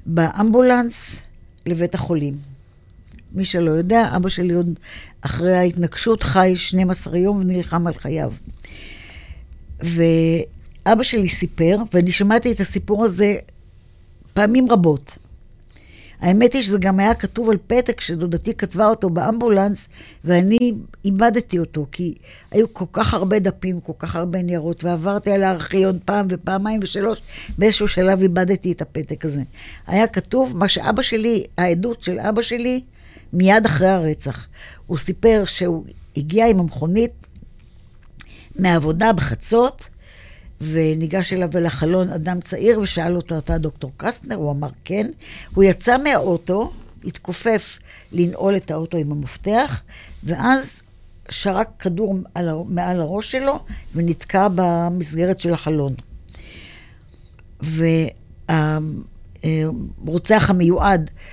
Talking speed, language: 115 wpm, Hebrew